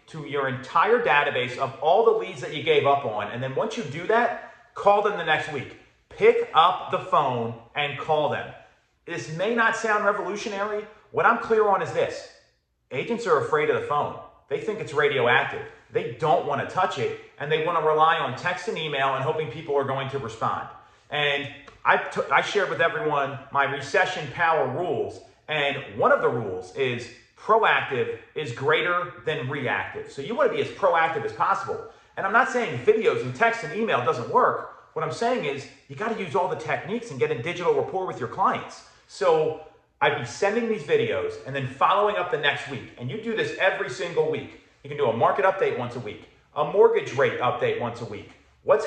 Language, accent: English, American